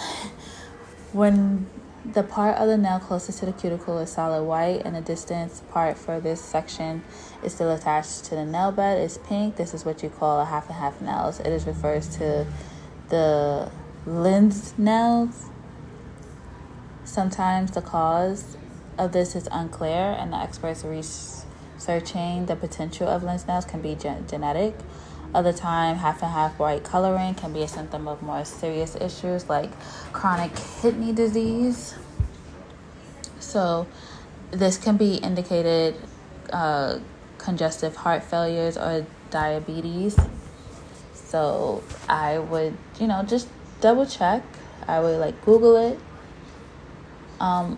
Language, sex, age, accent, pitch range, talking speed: English, female, 20-39, American, 160-190 Hz, 135 wpm